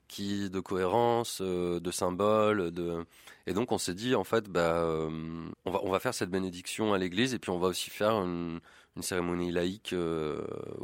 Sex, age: male, 30-49